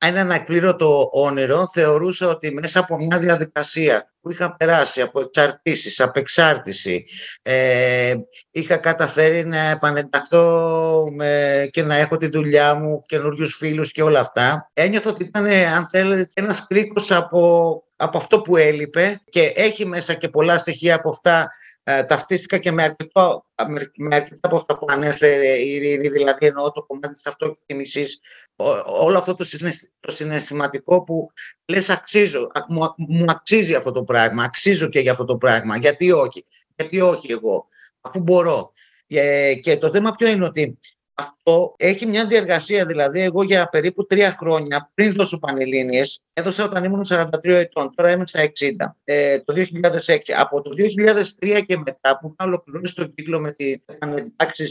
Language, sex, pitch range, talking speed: Greek, male, 145-180 Hz, 150 wpm